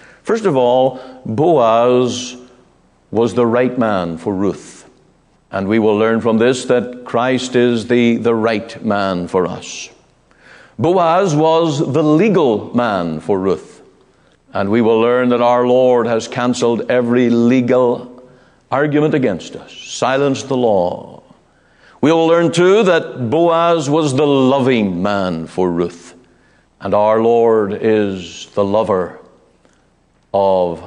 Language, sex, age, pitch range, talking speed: English, male, 60-79, 105-135 Hz, 130 wpm